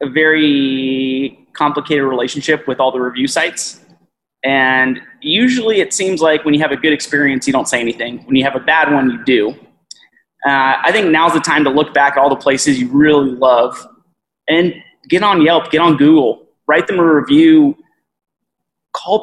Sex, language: male, English